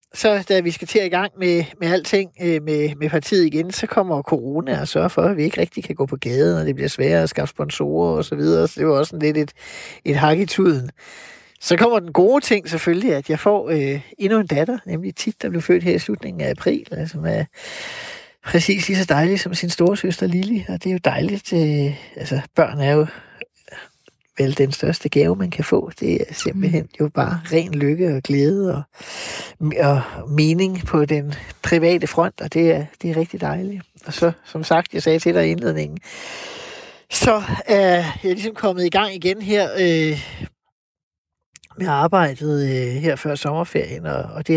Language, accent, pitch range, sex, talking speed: Danish, native, 150-185 Hz, male, 200 wpm